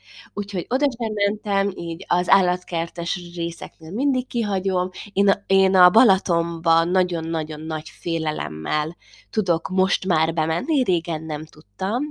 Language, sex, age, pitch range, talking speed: Hungarian, female, 20-39, 160-215 Hz, 115 wpm